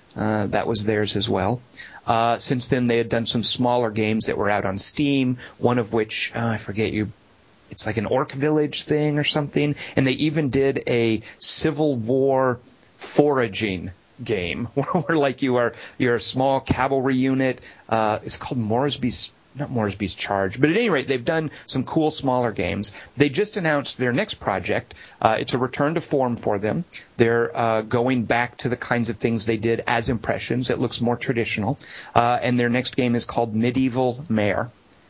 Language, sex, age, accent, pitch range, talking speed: English, male, 40-59, American, 110-140 Hz, 190 wpm